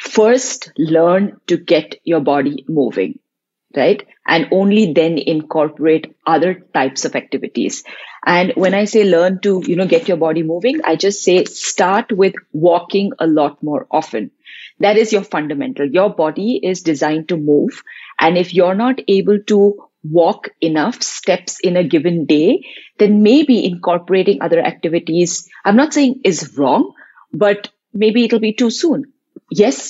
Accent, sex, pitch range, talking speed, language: native, female, 160-200 Hz, 155 wpm, Hindi